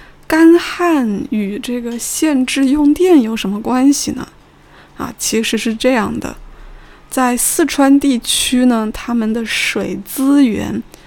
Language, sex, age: Chinese, female, 20-39